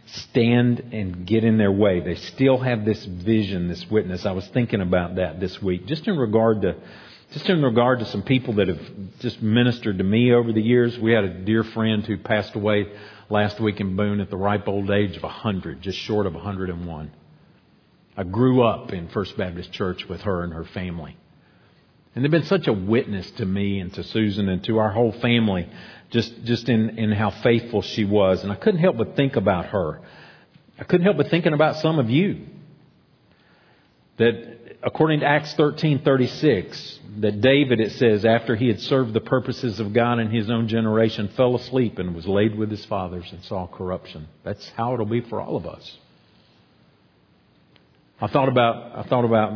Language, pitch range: English, 100-120 Hz